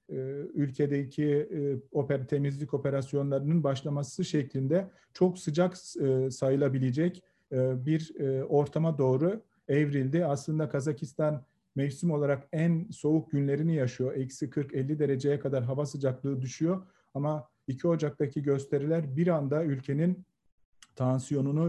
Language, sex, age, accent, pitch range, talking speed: Turkish, male, 40-59, native, 140-170 Hz, 95 wpm